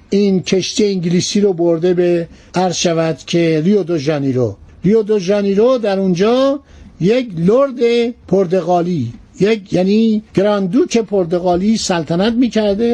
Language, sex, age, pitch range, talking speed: Persian, male, 60-79, 170-215 Hz, 125 wpm